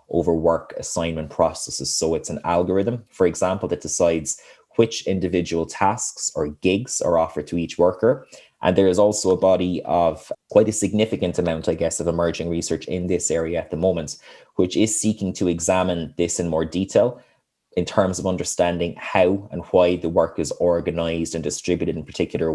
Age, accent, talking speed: 20-39, Irish, 180 wpm